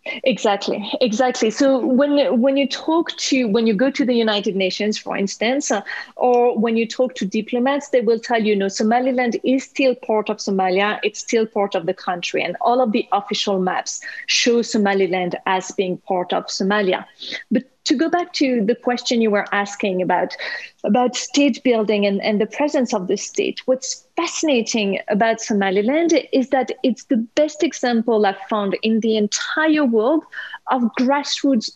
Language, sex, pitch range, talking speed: English, female, 215-280 Hz, 175 wpm